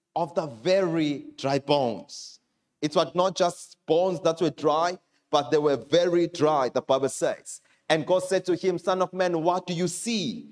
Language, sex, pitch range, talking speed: English, male, 170-220 Hz, 190 wpm